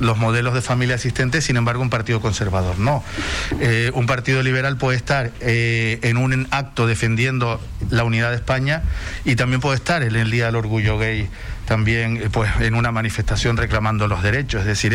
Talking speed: 185 wpm